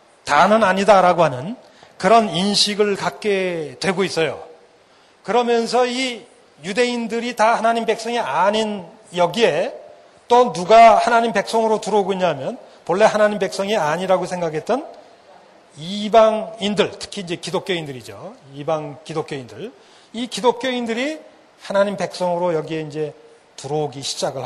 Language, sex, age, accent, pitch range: Korean, male, 40-59, native, 170-220 Hz